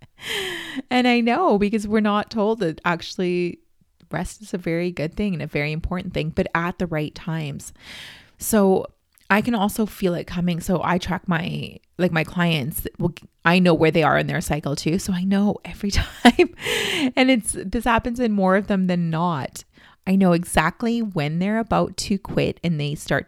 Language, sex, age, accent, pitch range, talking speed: English, female, 30-49, American, 170-230 Hz, 190 wpm